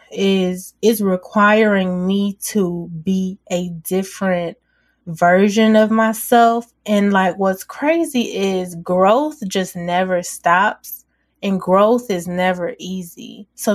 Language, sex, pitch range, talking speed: English, female, 180-220 Hz, 115 wpm